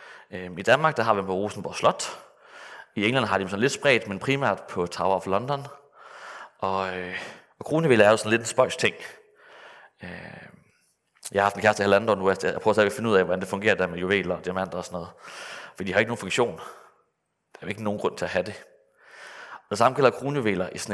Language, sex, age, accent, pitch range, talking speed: Danish, male, 30-49, native, 95-135 Hz, 245 wpm